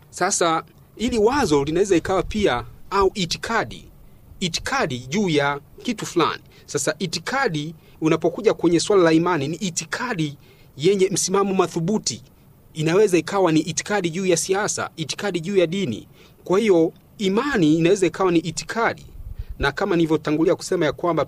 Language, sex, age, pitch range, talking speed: Swahili, male, 40-59, 145-190 Hz, 140 wpm